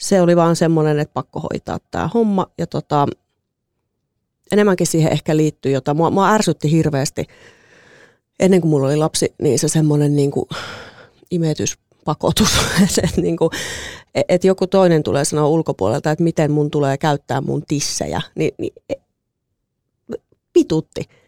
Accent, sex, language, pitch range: native, female, Finnish, 155-195 Hz